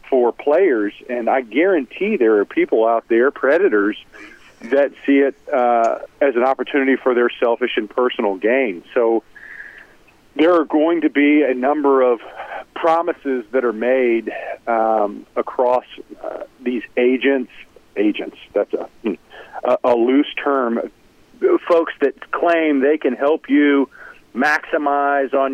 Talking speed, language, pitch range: 135 wpm, English, 120-145 Hz